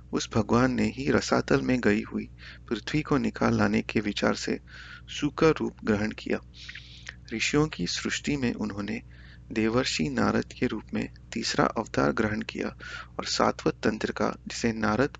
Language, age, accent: Hindi, 30-49, native